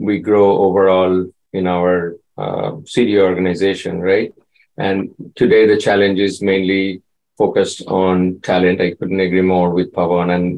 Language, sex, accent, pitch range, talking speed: English, male, Indian, 95-115 Hz, 140 wpm